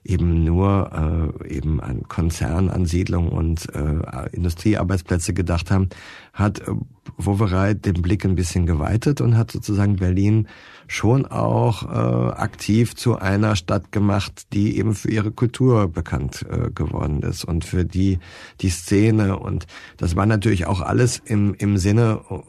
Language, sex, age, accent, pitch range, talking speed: German, male, 50-69, German, 90-110 Hz, 145 wpm